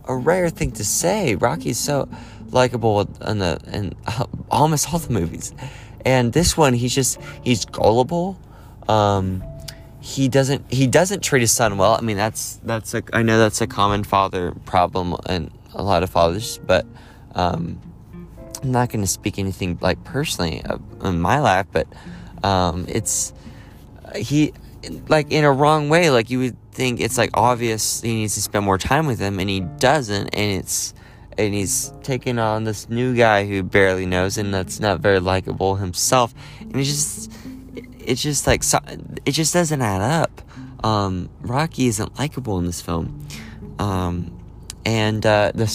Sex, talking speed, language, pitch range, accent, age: male, 170 wpm, English, 95-125 Hz, American, 20-39